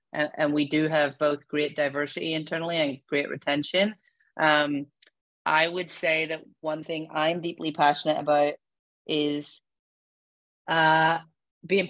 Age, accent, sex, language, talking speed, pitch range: 30-49, American, female, English, 130 wpm, 150-175 Hz